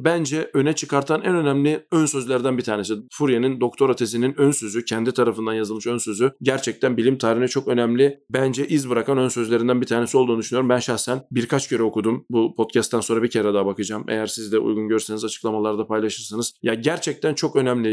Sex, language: male, Turkish